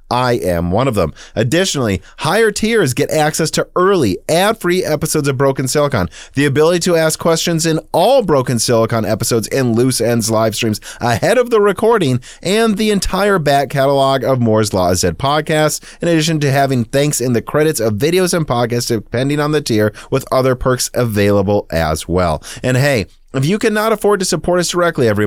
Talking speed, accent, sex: 190 wpm, American, male